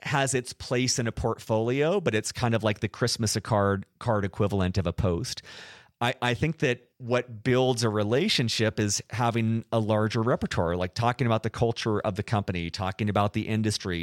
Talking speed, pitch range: 190 wpm, 100-125 Hz